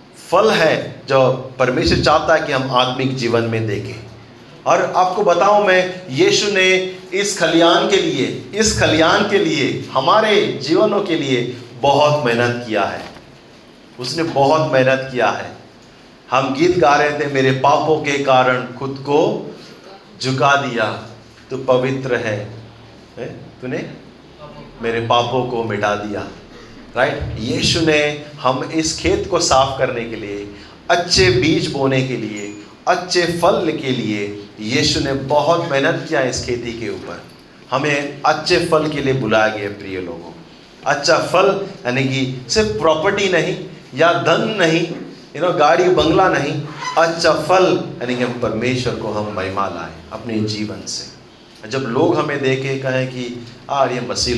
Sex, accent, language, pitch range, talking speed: male, native, Hindi, 115-165 Hz, 150 wpm